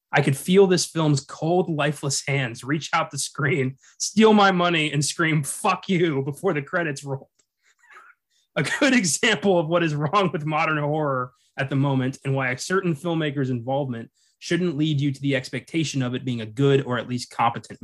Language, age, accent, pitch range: English, 20-39, American, 135-175 Hz